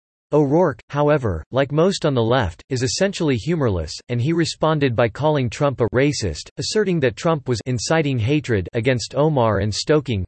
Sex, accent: male, American